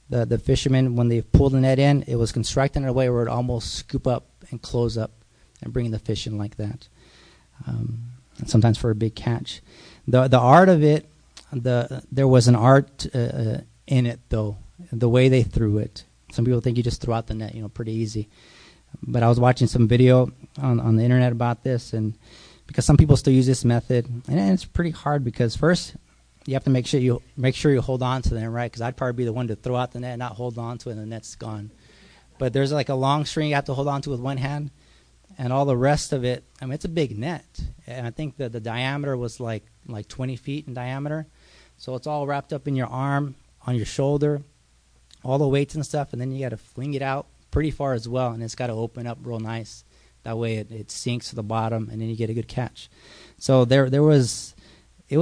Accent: American